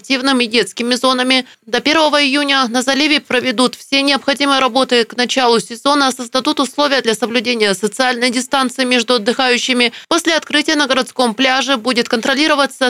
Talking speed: 140 wpm